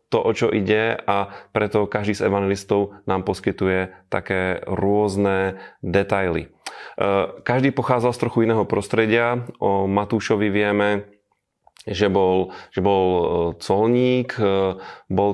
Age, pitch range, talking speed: 30-49, 100-105 Hz, 115 wpm